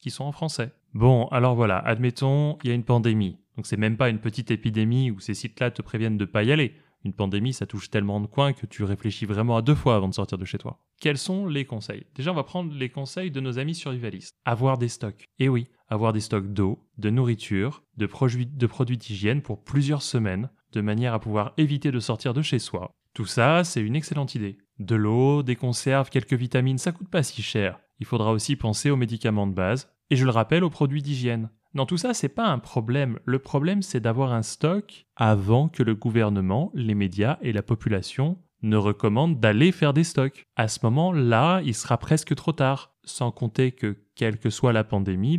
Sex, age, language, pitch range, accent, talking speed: male, 20-39, French, 110-140 Hz, French, 220 wpm